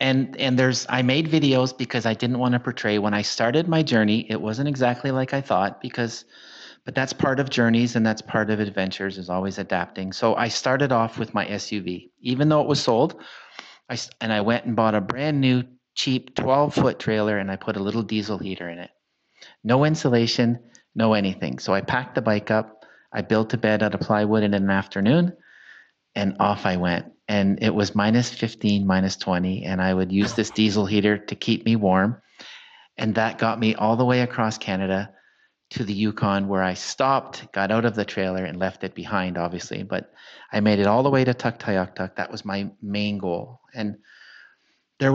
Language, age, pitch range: English, 40-59, 100-125 Hz